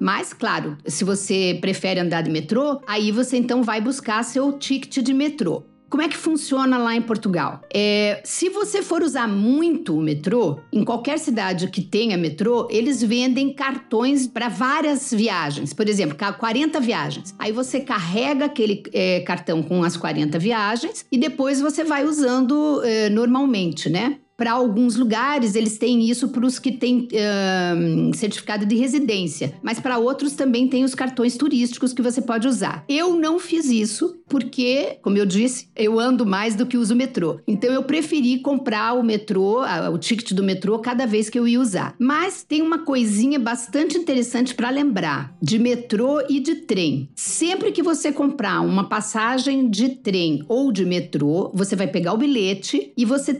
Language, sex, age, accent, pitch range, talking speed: Portuguese, female, 50-69, Brazilian, 205-270 Hz, 170 wpm